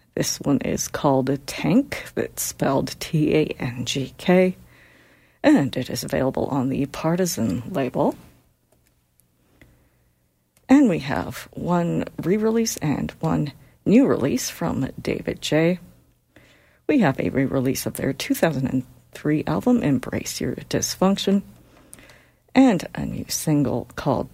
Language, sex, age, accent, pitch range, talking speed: English, female, 50-69, American, 115-160 Hz, 120 wpm